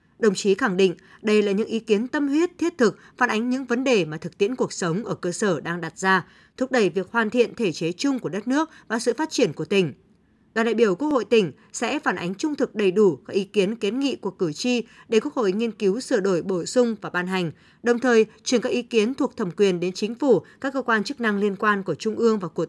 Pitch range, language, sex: 190-250 Hz, Vietnamese, female